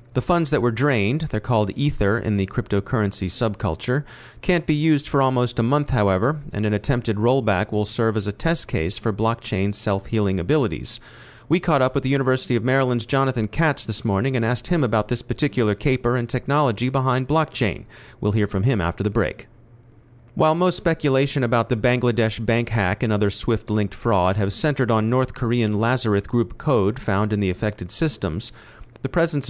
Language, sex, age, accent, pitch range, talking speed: English, male, 40-59, American, 105-130 Hz, 185 wpm